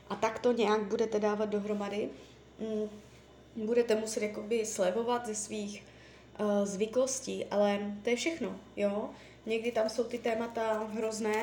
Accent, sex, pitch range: native, female, 210-250 Hz